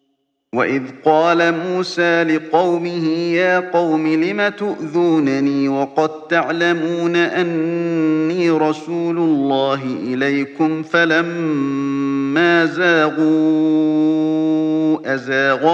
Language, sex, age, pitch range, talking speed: Arabic, male, 40-59, 135-165 Hz, 65 wpm